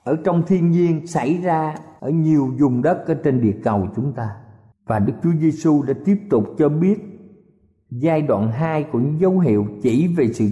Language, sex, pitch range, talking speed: Vietnamese, male, 135-185 Hz, 200 wpm